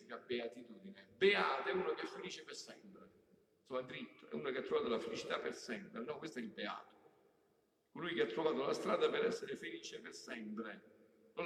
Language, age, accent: Italian, 50-69, native